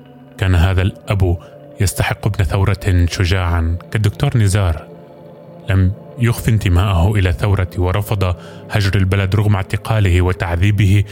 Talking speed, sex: 110 wpm, male